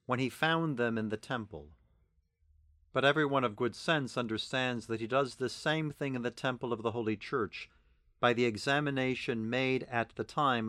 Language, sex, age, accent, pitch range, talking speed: English, male, 50-69, American, 110-135 Hz, 190 wpm